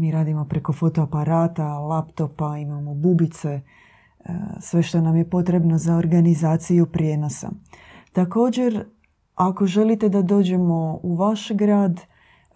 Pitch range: 155-175 Hz